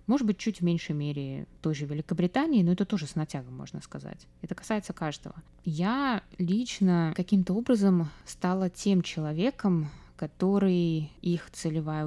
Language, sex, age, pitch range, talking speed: Russian, female, 20-39, 150-190 Hz, 145 wpm